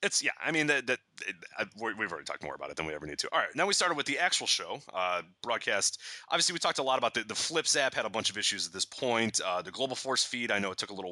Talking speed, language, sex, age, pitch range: 320 wpm, English, male, 30-49, 110-140 Hz